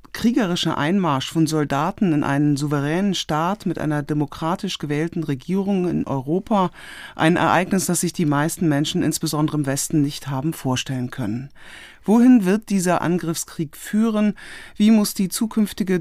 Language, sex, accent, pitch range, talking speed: German, female, German, 145-175 Hz, 140 wpm